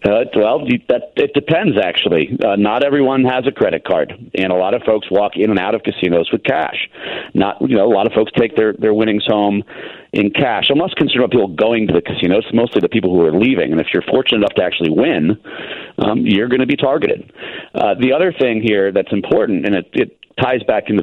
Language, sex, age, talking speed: English, male, 40-59, 235 wpm